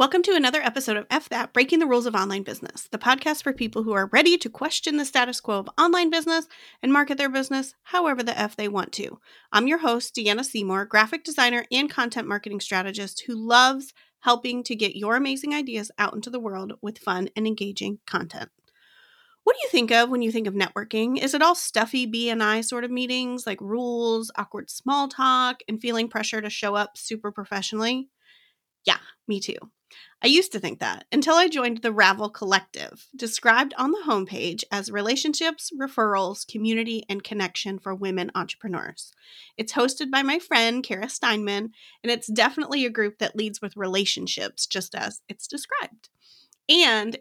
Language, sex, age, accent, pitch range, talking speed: English, female, 30-49, American, 210-270 Hz, 185 wpm